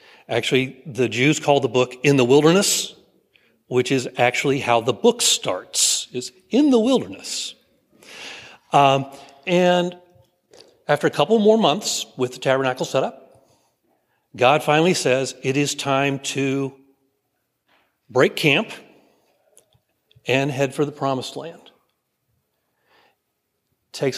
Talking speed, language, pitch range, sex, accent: 120 wpm, English, 125-170 Hz, male, American